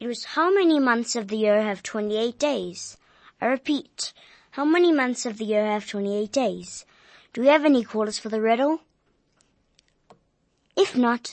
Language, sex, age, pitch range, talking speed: English, male, 20-39, 210-250 Hz, 180 wpm